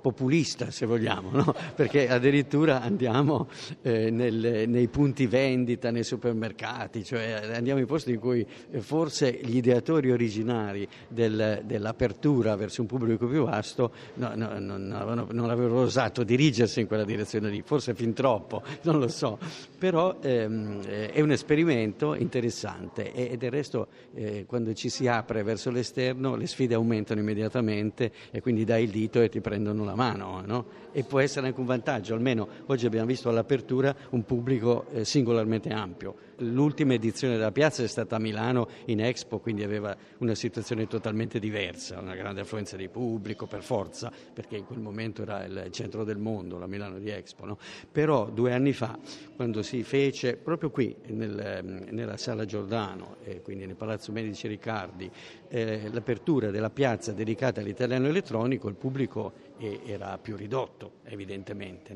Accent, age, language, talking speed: native, 50-69, Italian, 160 wpm